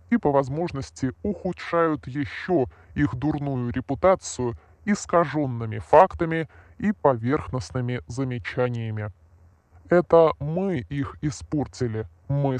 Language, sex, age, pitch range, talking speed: Russian, female, 20-39, 120-155 Hz, 85 wpm